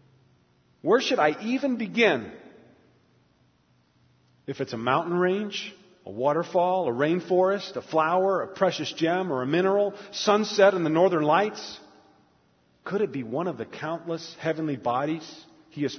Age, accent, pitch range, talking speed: 40-59, American, 110-180 Hz, 145 wpm